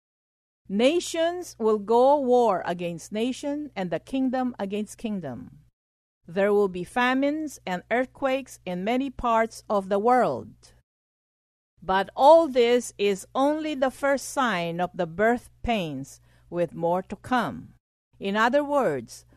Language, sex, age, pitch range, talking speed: English, female, 50-69, 175-255 Hz, 130 wpm